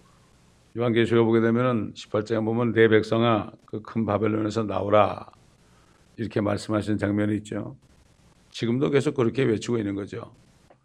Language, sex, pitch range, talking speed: English, male, 105-120 Hz, 110 wpm